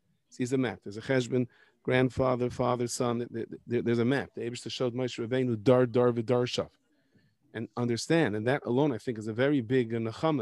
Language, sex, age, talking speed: English, male, 40-59, 155 wpm